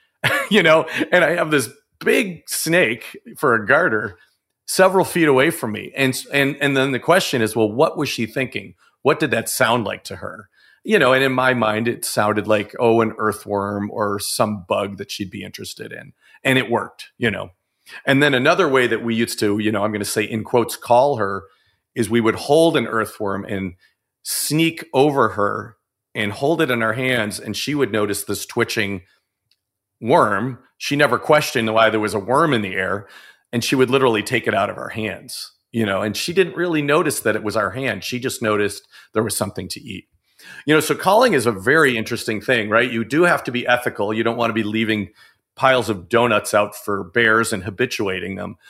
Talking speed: 215 wpm